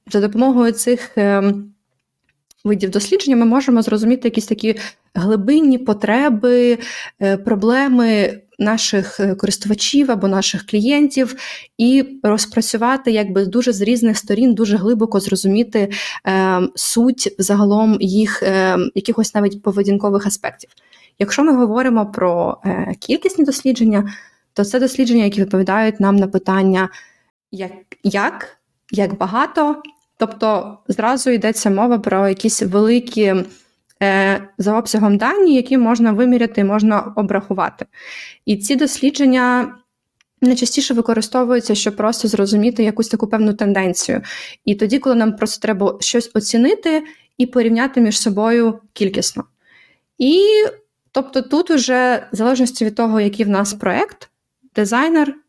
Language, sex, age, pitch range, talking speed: Ukrainian, female, 20-39, 205-250 Hz, 115 wpm